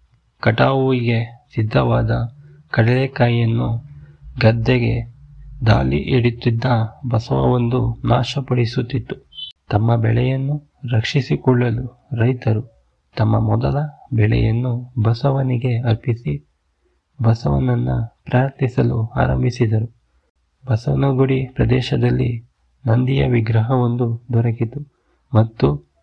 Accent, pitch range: native, 115-130 Hz